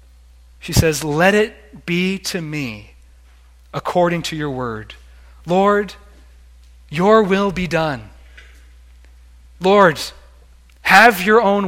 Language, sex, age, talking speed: English, male, 30-49, 105 wpm